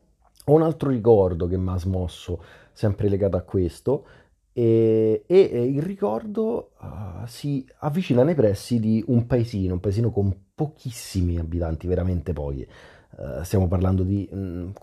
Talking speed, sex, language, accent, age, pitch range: 145 wpm, male, Italian, native, 30-49, 90-110 Hz